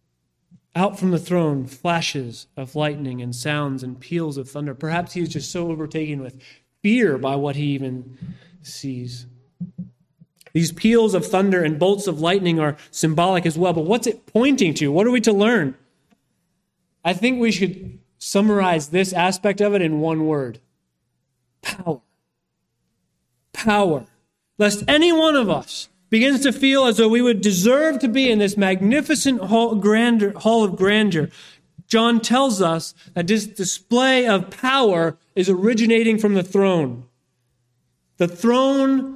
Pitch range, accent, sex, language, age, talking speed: 145-210 Hz, American, male, English, 30-49, 150 wpm